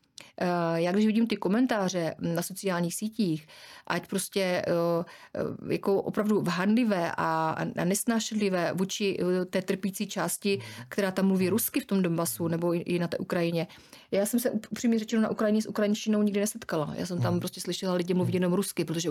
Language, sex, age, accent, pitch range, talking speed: Czech, female, 30-49, native, 175-200 Hz, 165 wpm